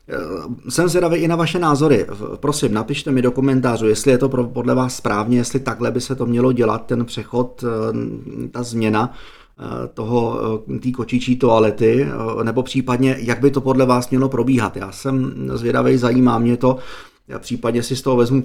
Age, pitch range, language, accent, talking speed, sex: 30-49, 115-135 Hz, Czech, native, 170 wpm, male